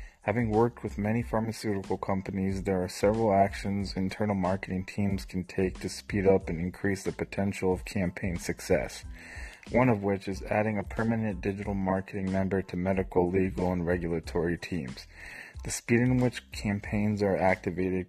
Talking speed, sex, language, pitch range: 160 wpm, male, English, 90-100 Hz